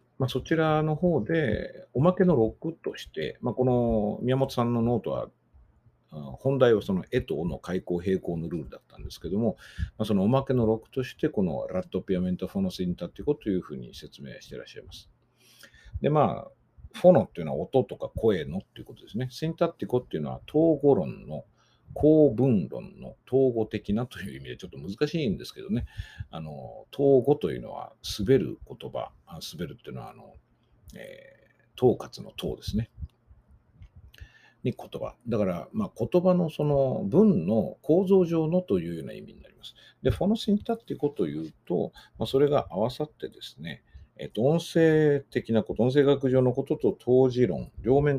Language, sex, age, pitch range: Japanese, male, 50-69, 105-150 Hz